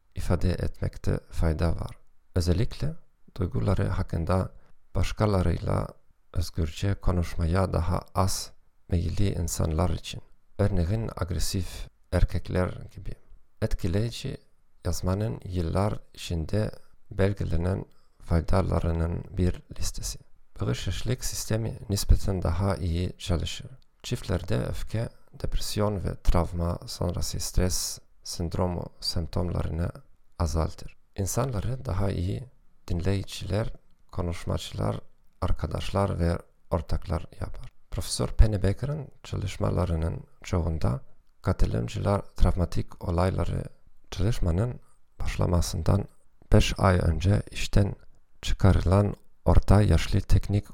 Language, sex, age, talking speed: Turkish, male, 40-59, 85 wpm